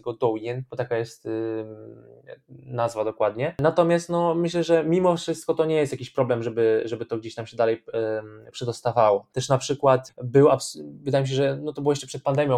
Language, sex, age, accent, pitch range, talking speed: Polish, male, 20-39, native, 115-135 Hz, 200 wpm